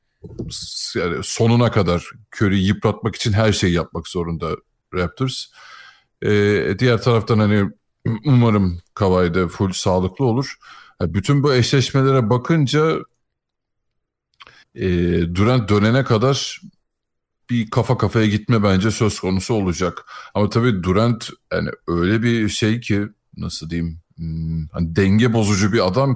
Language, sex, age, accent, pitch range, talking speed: Turkish, male, 50-69, native, 90-115 Hz, 115 wpm